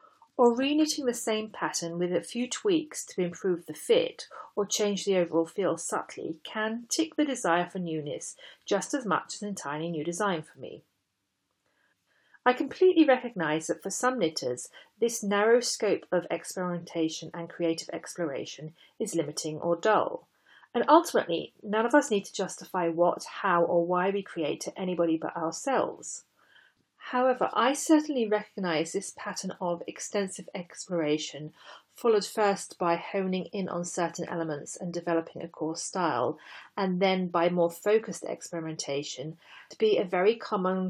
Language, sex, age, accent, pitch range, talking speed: English, female, 40-59, British, 170-225 Hz, 155 wpm